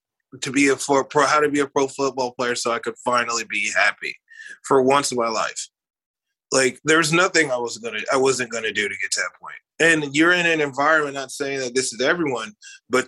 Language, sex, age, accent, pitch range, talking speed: English, male, 20-39, American, 130-165 Hz, 225 wpm